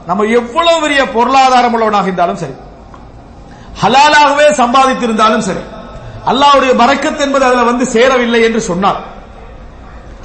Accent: Indian